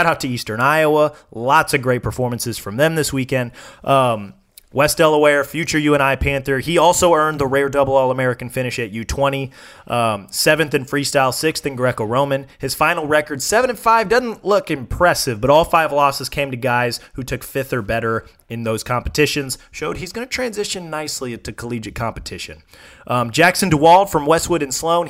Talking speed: 185 wpm